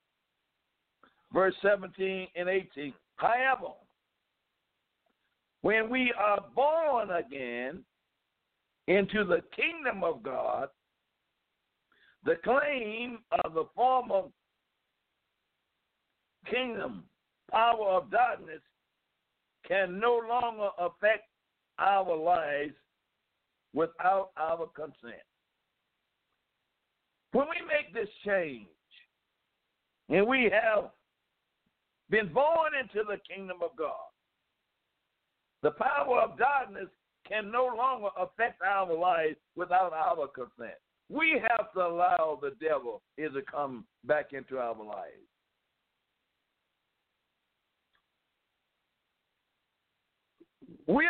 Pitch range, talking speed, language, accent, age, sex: 180-260 Hz, 85 wpm, English, American, 60-79, male